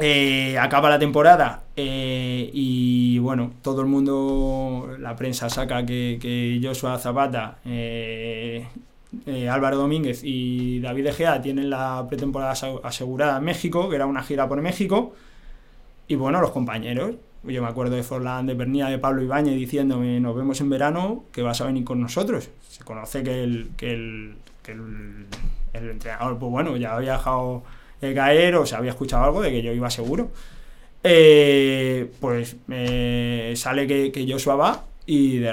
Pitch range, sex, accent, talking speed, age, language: 120-140 Hz, male, Spanish, 165 wpm, 20-39, Spanish